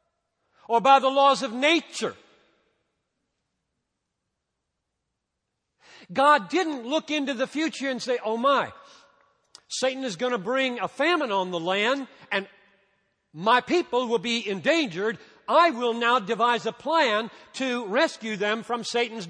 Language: English